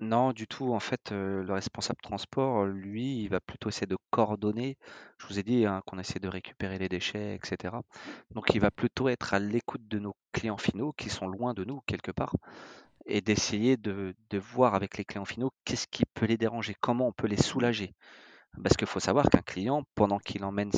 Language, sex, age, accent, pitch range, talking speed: French, male, 30-49, French, 95-120 Hz, 215 wpm